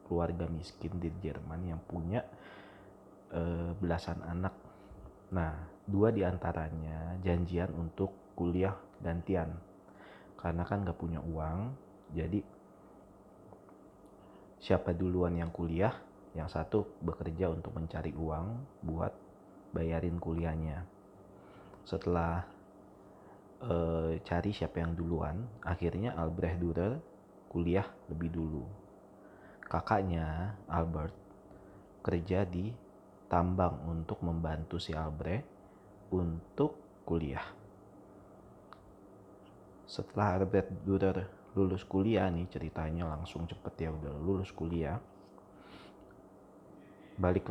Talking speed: 90 wpm